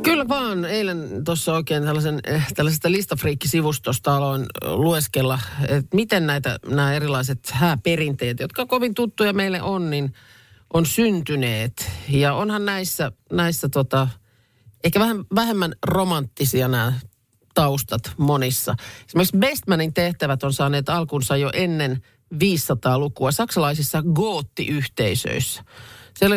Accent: native